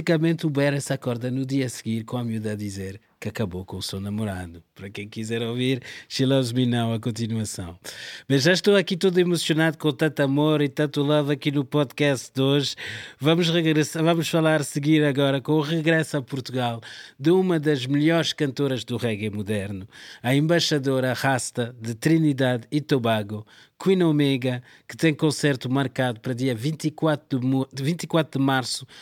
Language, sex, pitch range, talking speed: Portuguese, male, 115-150 Hz, 175 wpm